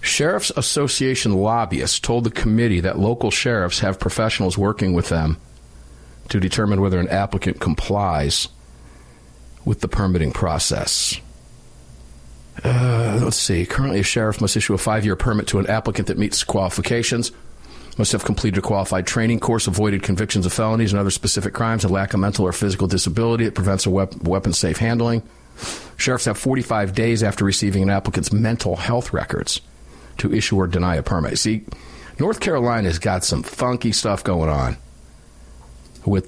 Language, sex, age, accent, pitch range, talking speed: English, male, 50-69, American, 85-115 Hz, 160 wpm